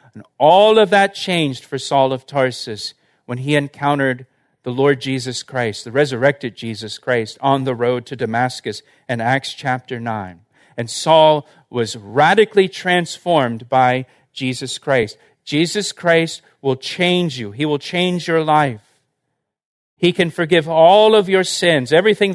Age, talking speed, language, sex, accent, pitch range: 40-59, 150 wpm, English, male, American, 135-180 Hz